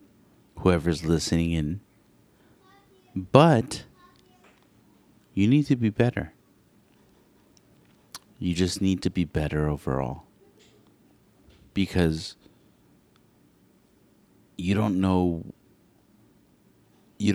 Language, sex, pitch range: English, male, 85-105 Hz